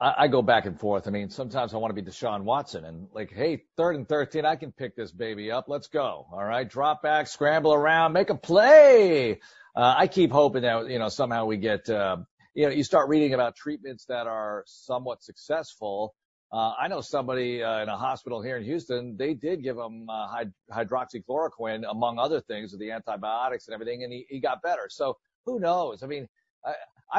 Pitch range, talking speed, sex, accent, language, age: 120-160 Hz, 210 wpm, male, American, English, 40-59